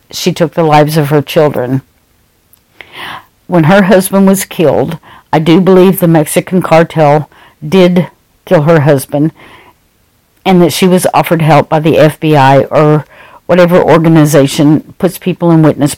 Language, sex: English, female